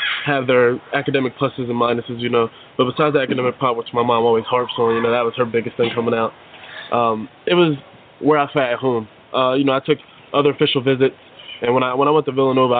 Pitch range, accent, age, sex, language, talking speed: 115-130 Hz, American, 20-39, male, English, 245 wpm